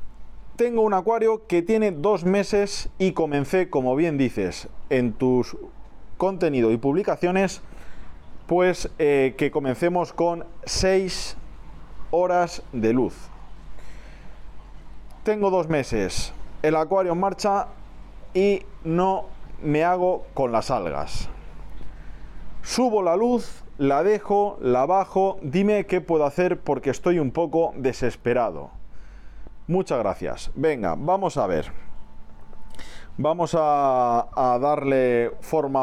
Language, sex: Spanish, male